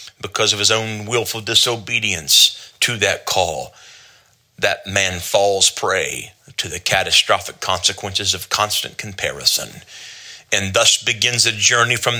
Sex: male